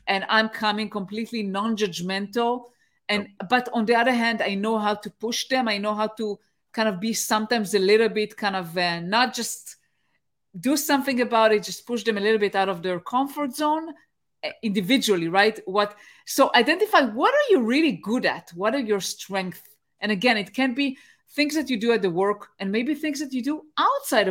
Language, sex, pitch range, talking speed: English, female, 210-270 Hz, 205 wpm